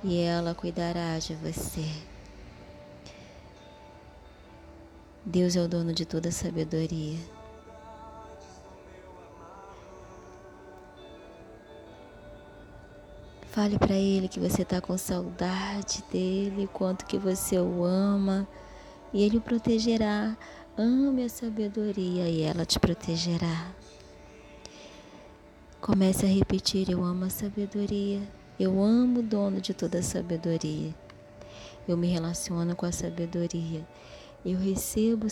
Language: Portuguese